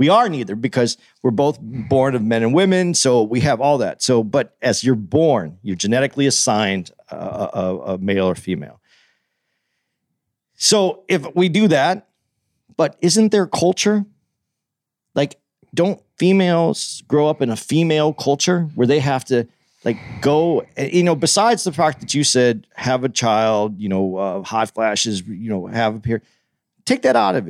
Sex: male